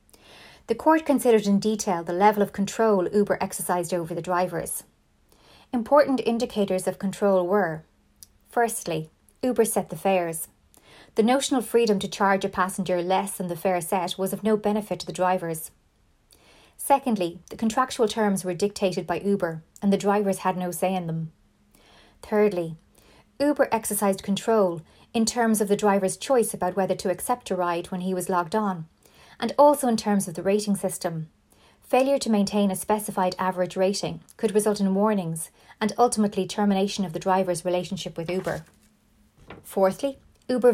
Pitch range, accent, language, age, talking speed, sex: 180-220 Hz, Irish, English, 30-49, 160 wpm, female